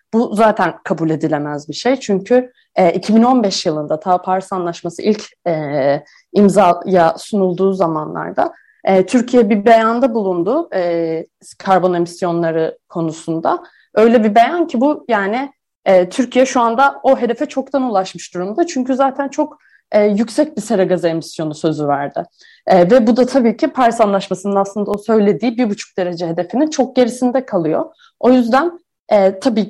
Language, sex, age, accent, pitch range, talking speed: Turkish, female, 30-49, native, 185-250 Hz, 150 wpm